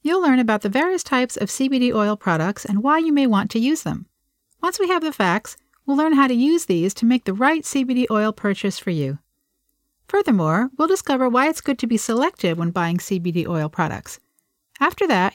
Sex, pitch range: female, 195-275 Hz